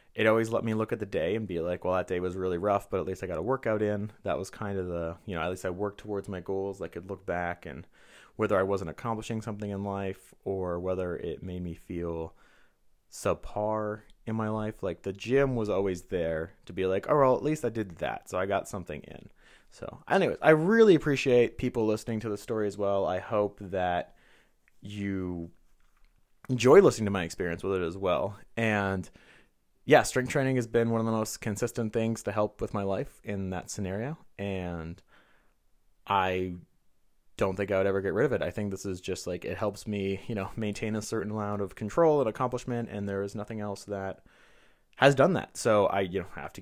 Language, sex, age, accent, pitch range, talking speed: English, male, 20-39, American, 95-115 Hz, 220 wpm